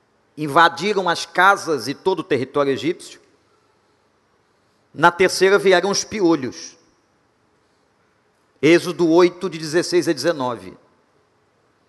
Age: 50-69